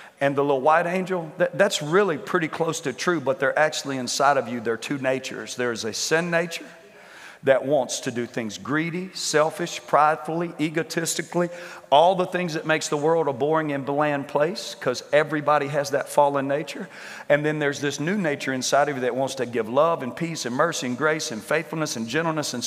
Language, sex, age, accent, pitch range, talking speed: English, male, 40-59, American, 135-170 Hz, 205 wpm